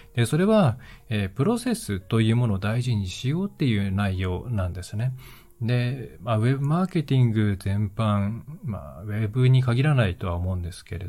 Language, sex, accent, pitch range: Japanese, male, native, 100-130 Hz